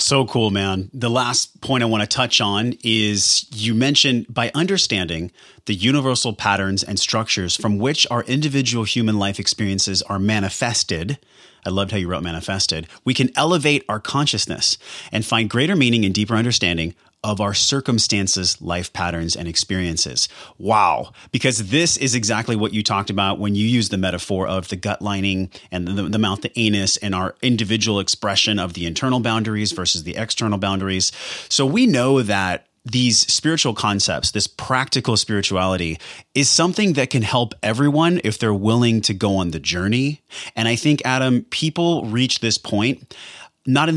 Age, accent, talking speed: 30-49, American, 170 wpm